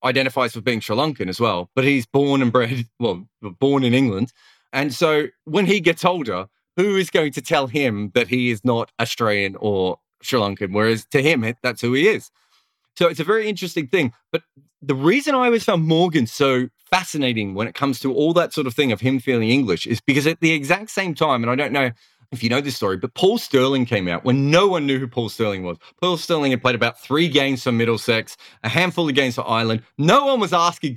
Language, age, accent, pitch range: English, 30-49, Australian, 120-165 Hz